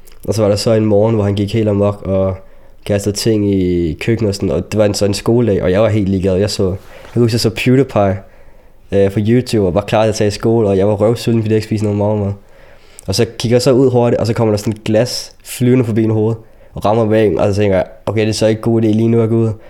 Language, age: Danish, 20-39